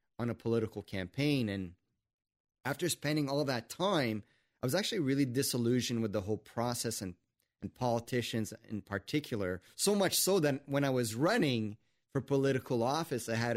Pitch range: 110-135 Hz